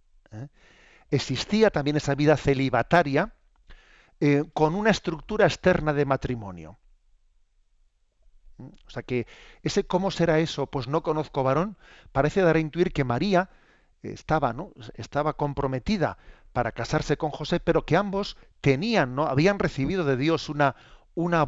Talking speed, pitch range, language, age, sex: 130 wpm, 125-155 Hz, Spanish, 40-59, male